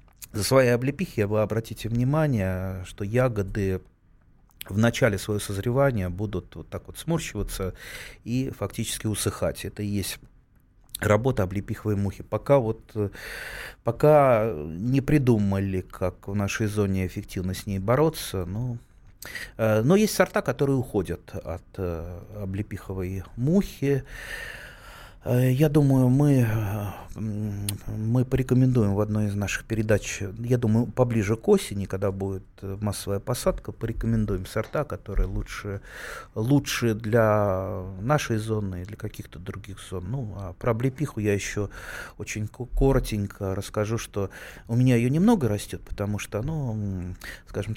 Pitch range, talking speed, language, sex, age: 100-120 Hz, 125 wpm, Russian, male, 30-49